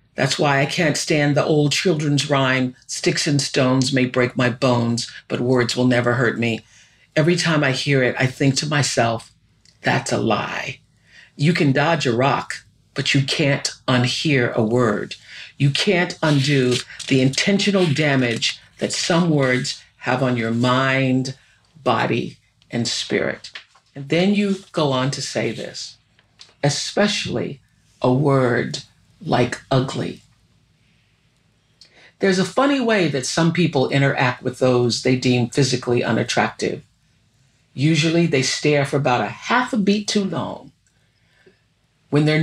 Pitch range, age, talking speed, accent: 125-160 Hz, 50-69, 145 wpm, American